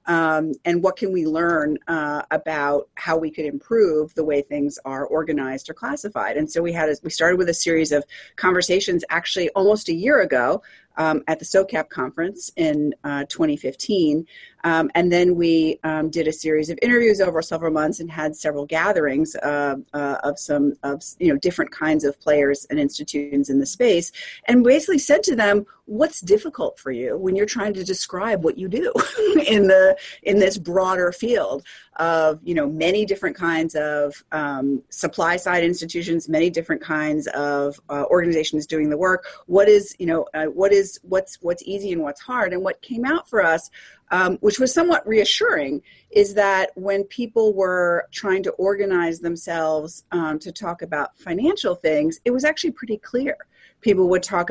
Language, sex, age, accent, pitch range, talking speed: English, female, 30-49, American, 155-215 Hz, 185 wpm